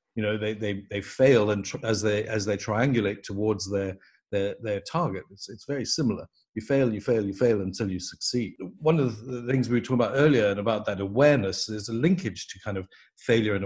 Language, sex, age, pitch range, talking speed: English, male, 50-69, 110-130 Hz, 230 wpm